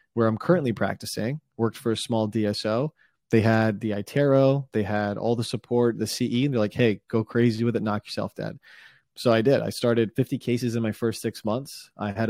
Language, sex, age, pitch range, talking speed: English, male, 20-39, 105-125 Hz, 220 wpm